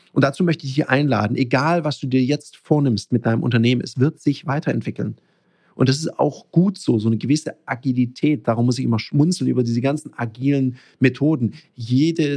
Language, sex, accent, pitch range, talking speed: German, male, German, 120-150 Hz, 195 wpm